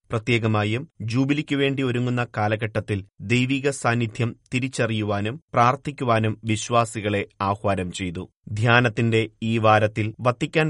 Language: Malayalam